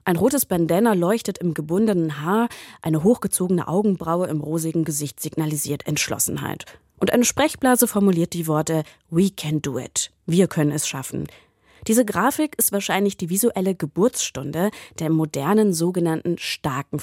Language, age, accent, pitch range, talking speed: German, 20-39, German, 155-210 Hz, 140 wpm